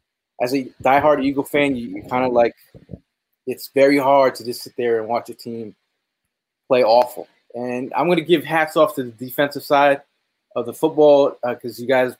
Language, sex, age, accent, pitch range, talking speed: English, male, 20-39, American, 115-140 Hz, 195 wpm